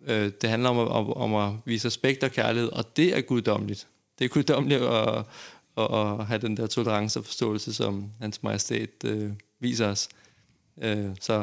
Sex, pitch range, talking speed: male, 105-125 Hz, 150 wpm